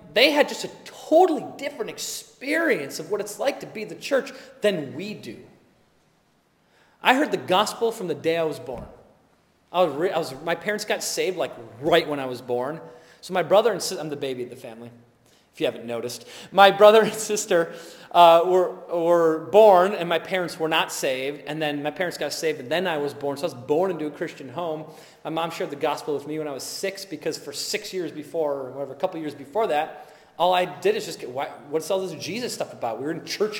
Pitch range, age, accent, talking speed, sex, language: 160-235 Hz, 30-49, American, 230 wpm, male, English